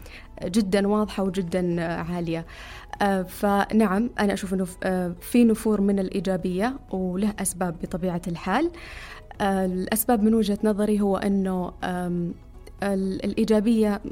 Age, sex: 20-39, female